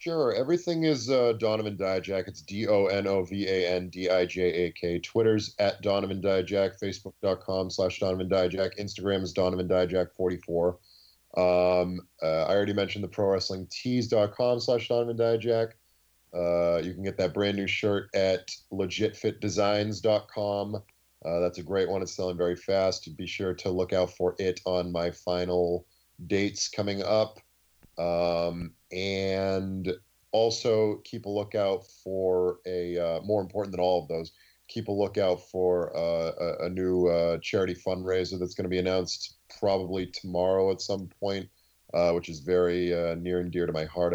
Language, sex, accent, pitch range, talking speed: English, male, American, 85-100 Hz, 150 wpm